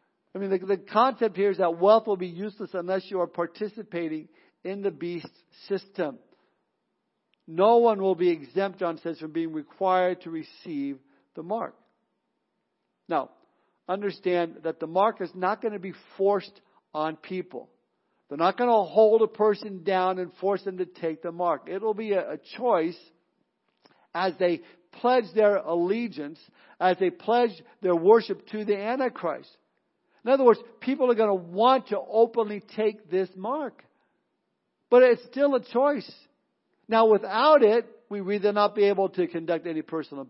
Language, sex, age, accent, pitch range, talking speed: English, male, 50-69, American, 180-225 Hz, 165 wpm